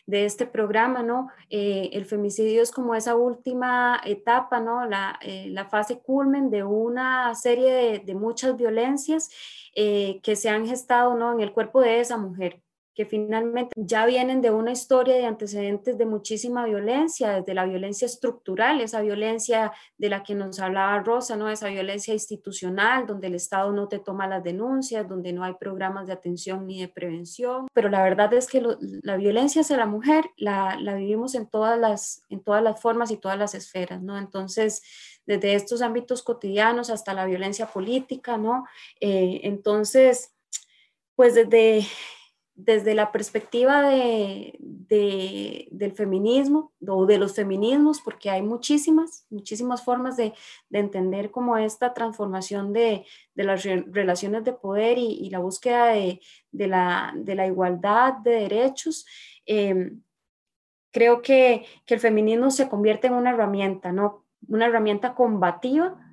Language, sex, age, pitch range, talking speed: Spanish, female, 20-39, 200-245 Hz, 155 wpm